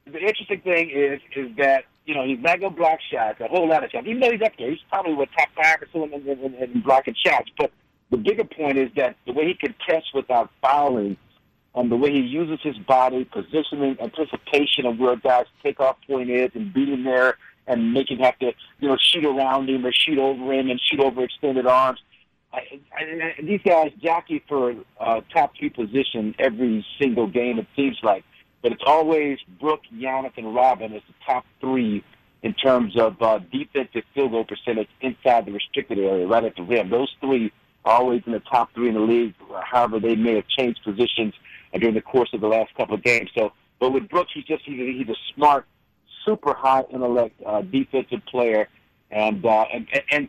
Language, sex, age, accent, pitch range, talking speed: English, male, 50-69, American, 120-155 Hz, 205 wpm